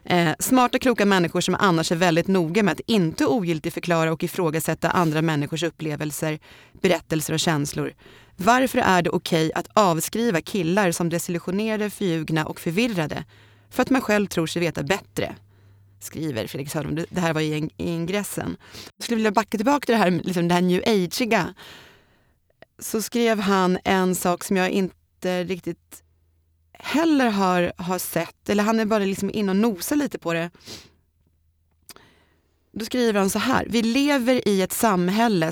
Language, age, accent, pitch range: English, 30-49, Swedish, 160-210 Hz